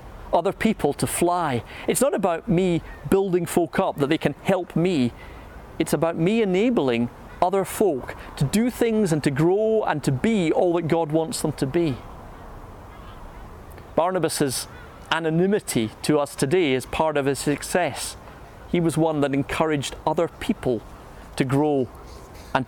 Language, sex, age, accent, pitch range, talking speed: English, male, 40-59, British, 120-160 Hz, 155 wpm